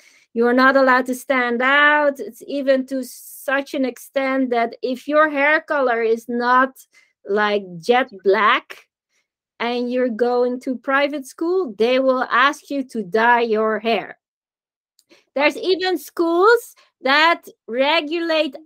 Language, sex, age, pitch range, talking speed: English, female, 20-39, 250-330 Hz, 130 wpm